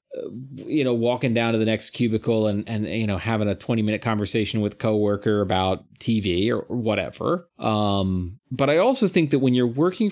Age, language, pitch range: 30-49, English, 110-140 Hz